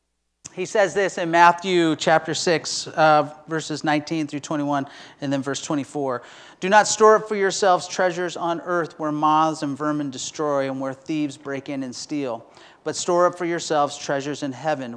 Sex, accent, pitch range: male, American, 130-155 Hz